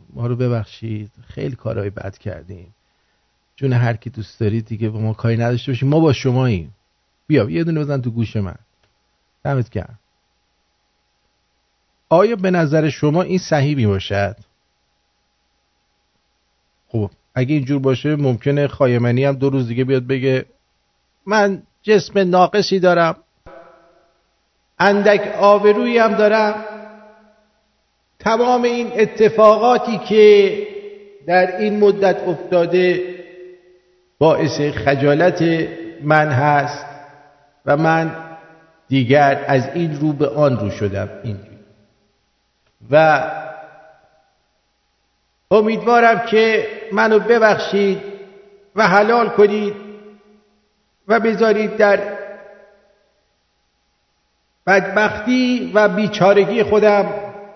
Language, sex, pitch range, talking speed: English, male, 130-205 Hz, 100 wpm